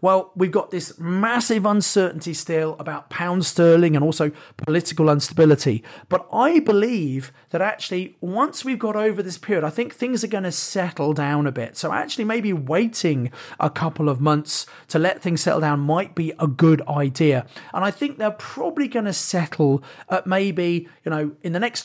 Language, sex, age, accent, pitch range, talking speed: English, male, 30-49, British, 150-190 Hz, 185 wpm